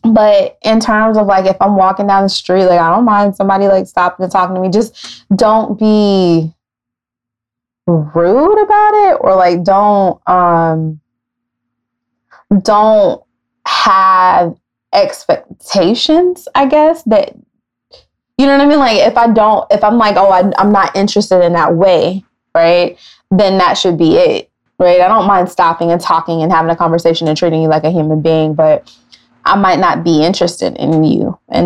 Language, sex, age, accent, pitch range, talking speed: English, female, 20-39, American, 165-215 Hz, 170 wpm